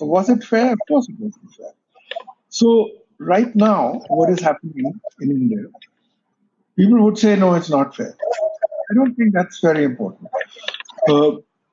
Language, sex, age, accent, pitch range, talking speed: English, male, 50-69, Indian, 170-245 Hz, 155 wpm